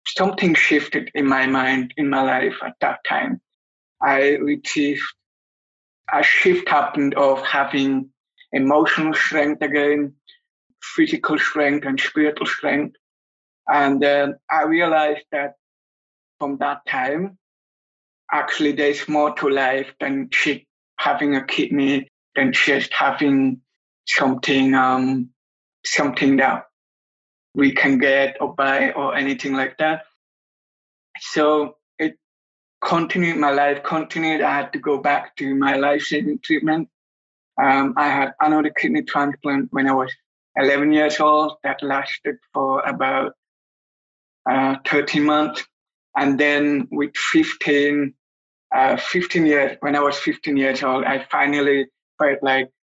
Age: 60-79